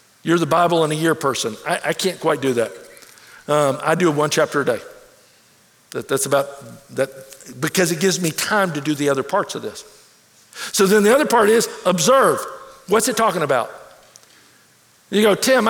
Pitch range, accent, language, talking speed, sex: 155-230 Hz, American, English, 190 wpm, male